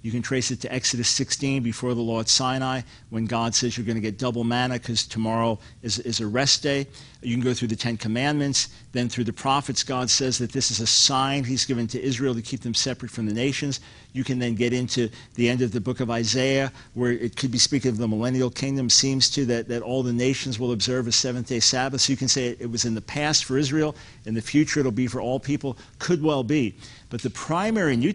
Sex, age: male, 50-69